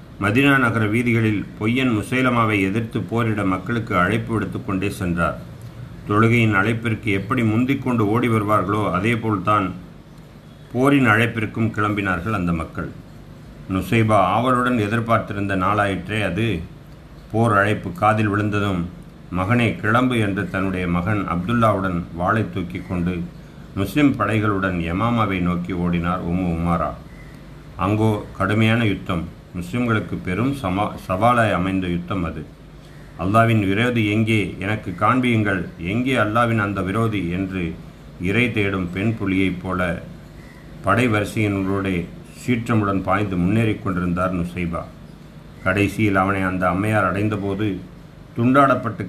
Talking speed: 105 wpm